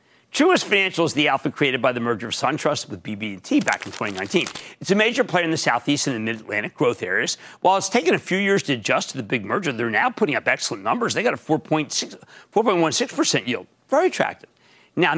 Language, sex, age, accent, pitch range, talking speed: English, male, 50-69, American, 130-180 Hz, 215 wpm